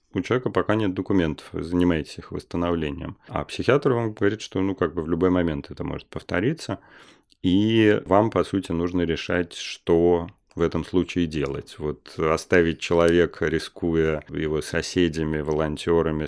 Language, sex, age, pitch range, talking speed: Russian, male, 30-49, 80-95 Hz, 140 wpm